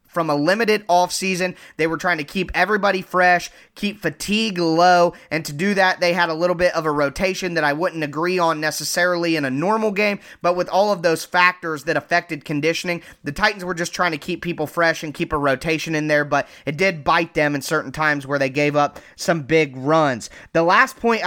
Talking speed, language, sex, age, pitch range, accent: 220 wpm, English, male, 20-39, 155-190 Hz, American